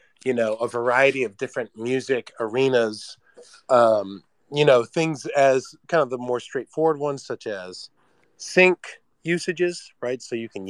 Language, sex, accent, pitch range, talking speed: English, male, American, 120-170 Hz, 150 wpm